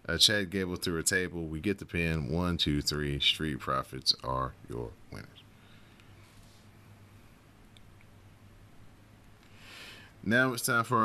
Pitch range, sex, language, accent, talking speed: 90-105 Hz, male, English, American, 120 wpm